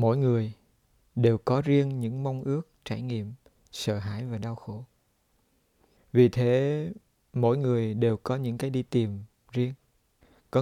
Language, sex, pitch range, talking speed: Vietnamese, male, 110-130 Hz, 155 wpm